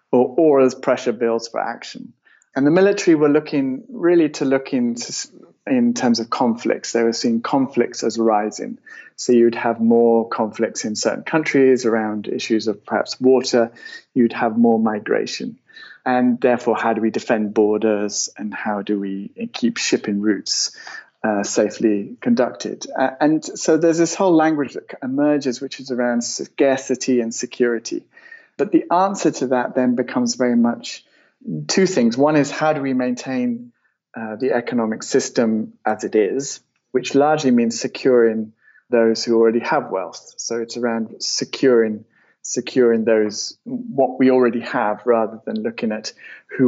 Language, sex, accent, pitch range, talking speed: English, male, British, 115-155 Hz, 155 wpm